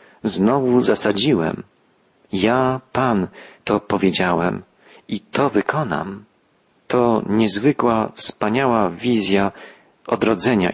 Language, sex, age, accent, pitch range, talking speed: Polish, male, 40-59, native, 105-130 Hz, 80 wpm